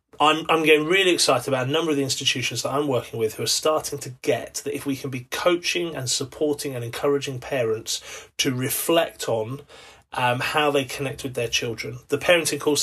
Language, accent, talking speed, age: English, British, 205 wpm, 30-49